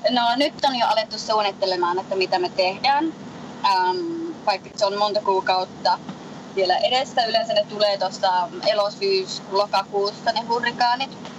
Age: 20-39